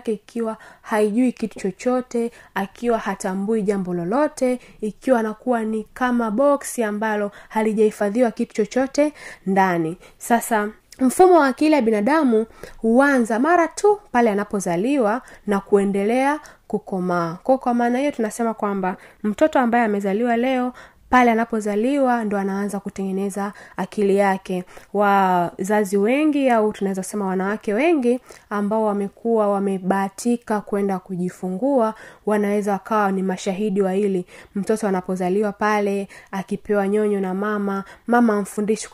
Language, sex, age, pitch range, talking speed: Swahili, female, 20-39, 195-240 Hz, 115 wpm